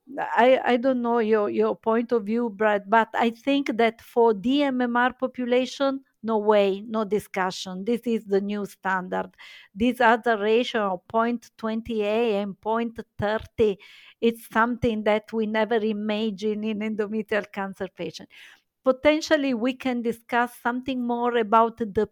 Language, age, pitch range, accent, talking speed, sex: English, 50-69, 205-235 Hz, Italian, 140 wpm, female